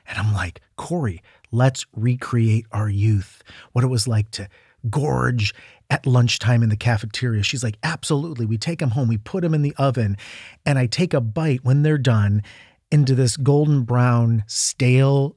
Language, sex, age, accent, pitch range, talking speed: English, male, 40-59, American, 110-140 Hz, 175 wpm